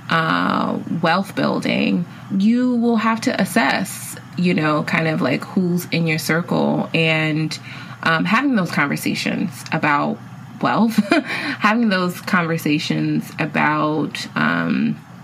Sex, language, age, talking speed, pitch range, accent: female, English, 20-39, 115 wpm, 155-205 Hz, American